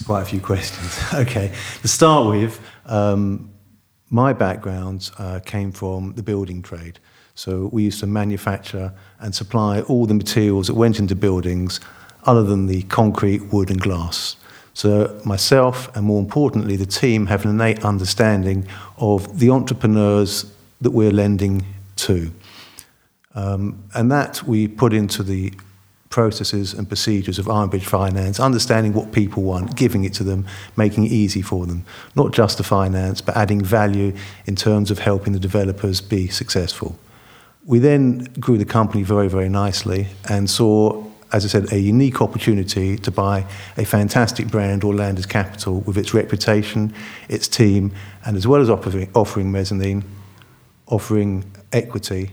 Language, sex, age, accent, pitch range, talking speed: English, male, 50-69, British, 95-110 Hz, 155 wpm